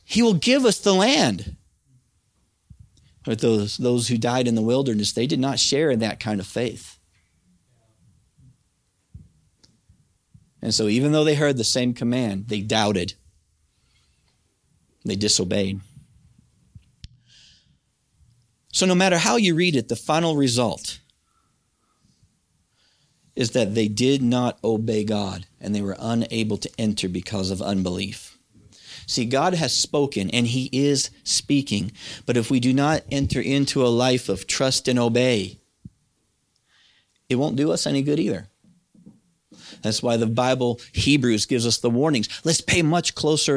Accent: American